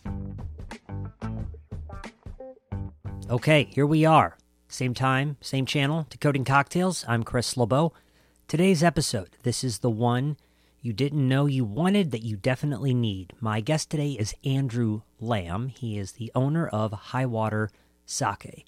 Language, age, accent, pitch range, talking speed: English, 40-59, American, 100-135 Hz, 135 wpm